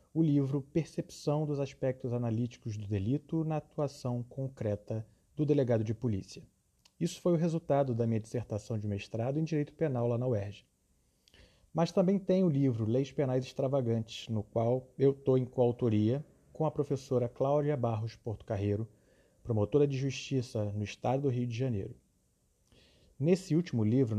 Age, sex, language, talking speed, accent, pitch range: 30-49, male, Portuguese, 155 wpm, Brazilian, 110-145 Hz